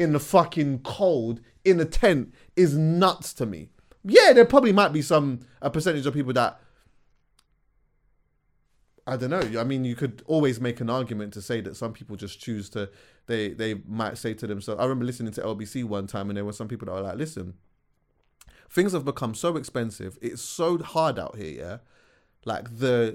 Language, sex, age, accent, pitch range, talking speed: English, male, 20-39, British, 105-145 Hz, 195 wpm